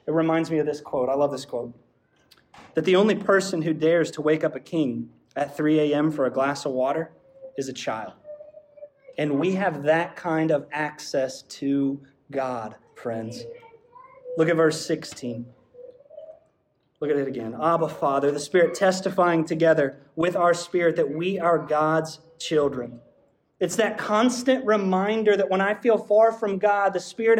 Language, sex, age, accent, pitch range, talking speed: English, male, 30-49, American, 150-210 Hz, 170 wpm